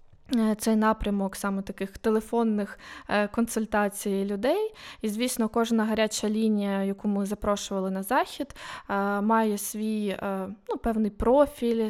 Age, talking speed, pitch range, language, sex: 20-39, 110 wpm, 205-230 Hz, Ukrainian, female